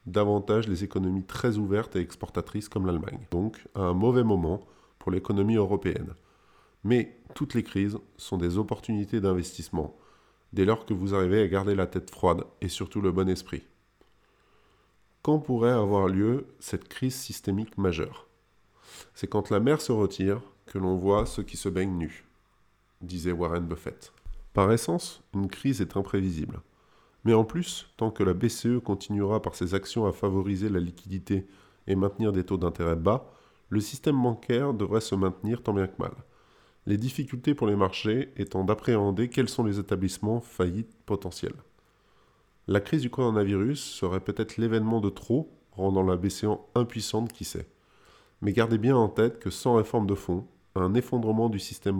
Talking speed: 165 wpm